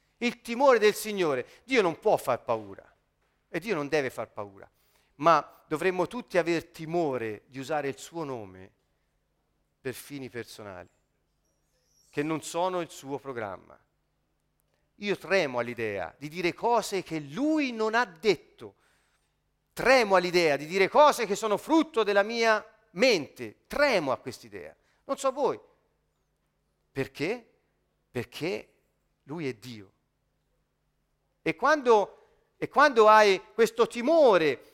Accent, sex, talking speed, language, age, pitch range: native, male, 130 wpm, Italian, 40-59, 175-270 Hz